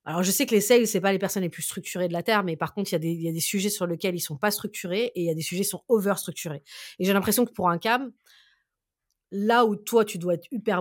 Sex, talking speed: female, 305 wpm